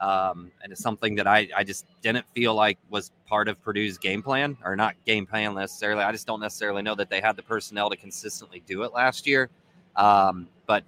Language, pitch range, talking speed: English, 105-125 Hz, 220 wpm